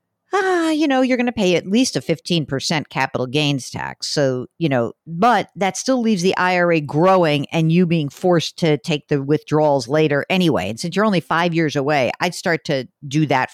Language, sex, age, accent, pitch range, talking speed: English, female, 50-69, American, 150-190 Hz, 205 wpm